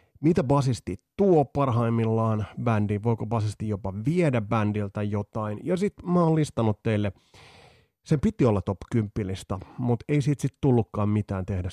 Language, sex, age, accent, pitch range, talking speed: Finnish, male, 30-49, native, 100-125 Hz, 150 wpm